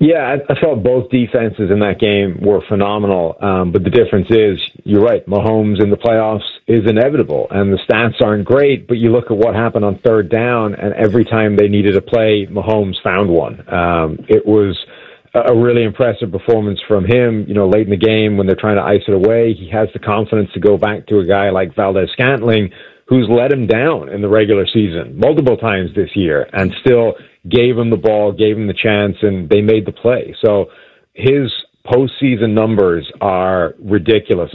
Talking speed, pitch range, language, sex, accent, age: 200 wpm, 100-115 Hz, English, male, American, 40-59